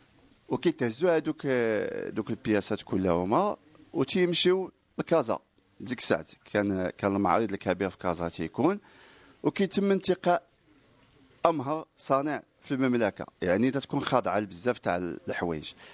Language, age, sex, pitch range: English, 40-59, male, 110-155 Hz